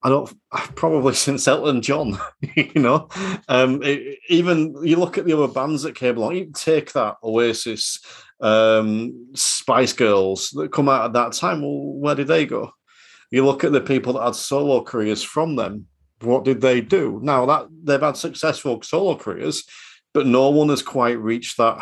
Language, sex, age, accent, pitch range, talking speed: English, male, 40-59, British, 105-135 Hz, 180 wpm